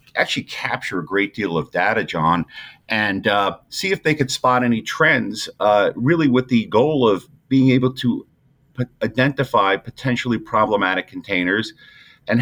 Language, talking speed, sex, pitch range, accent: English, 150 wpm, male, 90-125 Hz, American